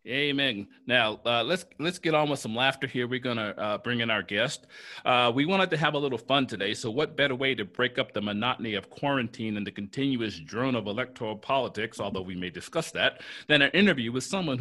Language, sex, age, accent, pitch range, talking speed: English, male, 40-59, American, 110-145 Hz, 230 wpm